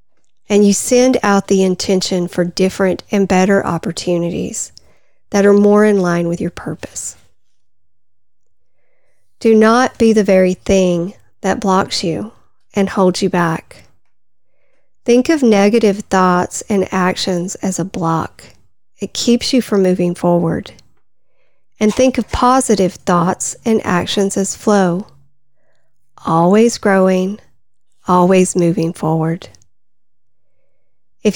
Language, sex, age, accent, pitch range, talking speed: English, female, 40-59, American, 175-210 Hz, 120 wpm